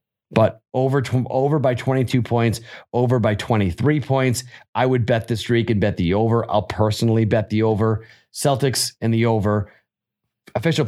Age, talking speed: 30-49, 160 wpm